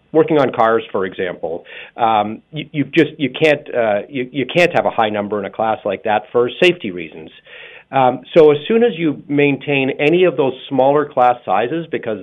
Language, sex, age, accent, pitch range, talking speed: English, male, 40-59, American, 115-150 Hz, 200 wpm